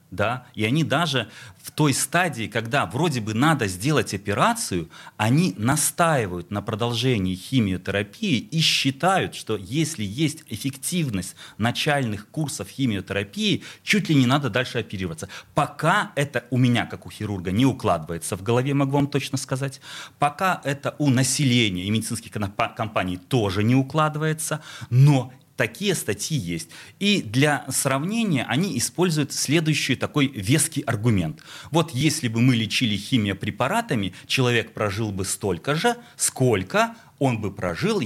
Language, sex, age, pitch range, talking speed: Russian, male, 30-49, 105-145 Hz, 135 wpm